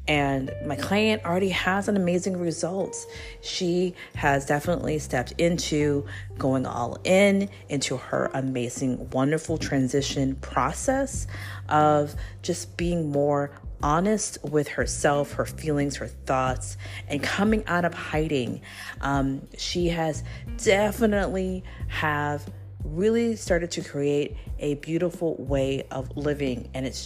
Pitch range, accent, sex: 125-170 Hz, American, female